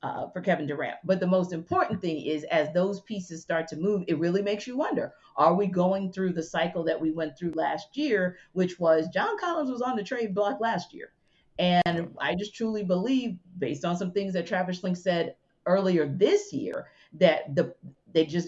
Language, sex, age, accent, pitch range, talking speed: English, female, 40-59, American, 155-195 Hz, 210 wpm